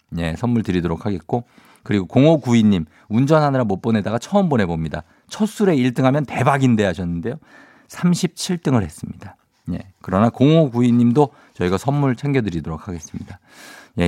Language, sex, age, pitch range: Korean, male, 50-69, 100-160 Hz